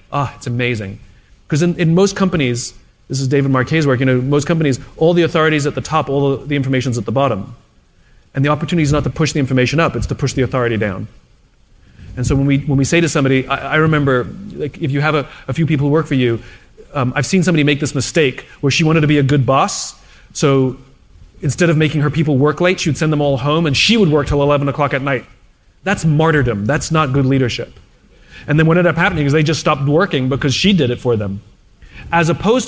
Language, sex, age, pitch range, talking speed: English, male, 30-49, 130-170 Hz, 245 wpm